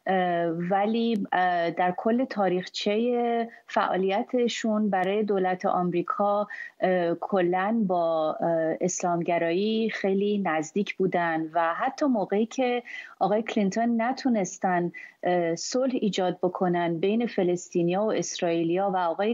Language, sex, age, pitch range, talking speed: Persian, female, 30-49, 175-220 Hz, 95 wpm